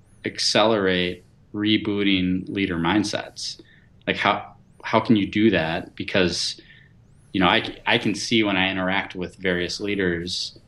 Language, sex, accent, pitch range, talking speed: English, male, American, 90-105 Hz, 135 wpm